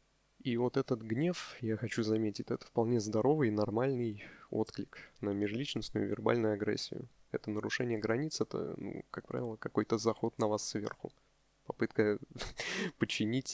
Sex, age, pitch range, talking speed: male, 20-39, 105-130 Hz, 135 wpm